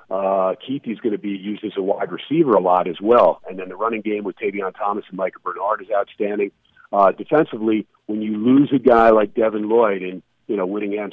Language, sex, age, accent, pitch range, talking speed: English, male, 50-69, American, 105-135 Hz, 225 wpm